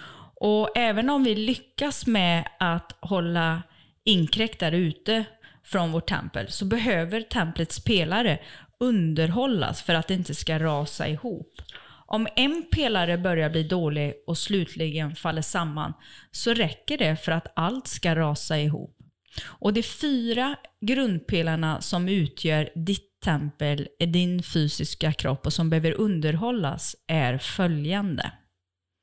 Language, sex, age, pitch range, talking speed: Swedish, female, 30-49, 155-200 Hz, 130 wpm